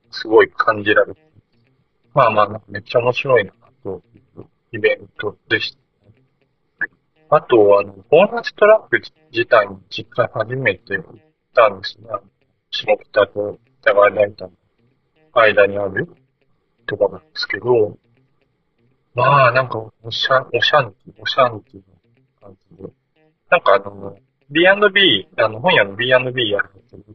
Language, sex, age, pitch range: Japanese, male, 40-59, 105-150 Hz